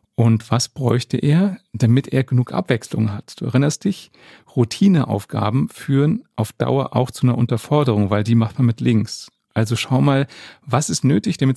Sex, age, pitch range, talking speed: male, 40-59, 110-130 Hz, 170 wpm